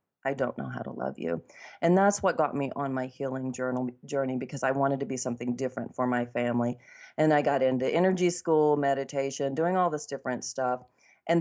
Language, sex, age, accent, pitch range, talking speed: English, female, 40-59, American, 130-150 Hz, 210 wpm